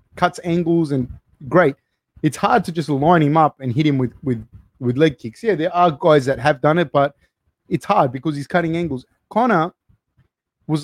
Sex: male